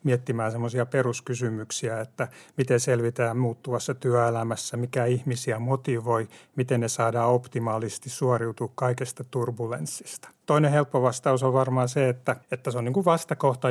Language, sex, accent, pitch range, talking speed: Finnish, male, native, 120-140 Hz, 135 wpm